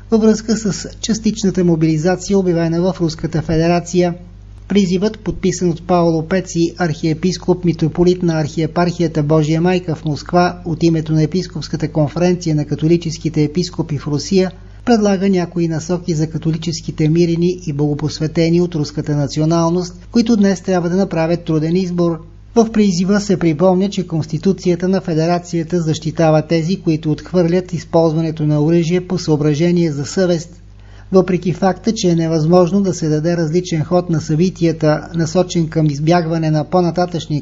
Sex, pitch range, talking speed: male, 155-180 Hz, 140 wpm